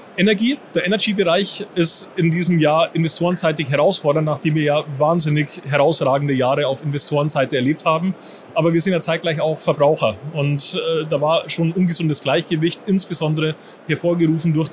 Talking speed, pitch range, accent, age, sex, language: 145 wpm, 145-165 Hz, German, 30-49, male, German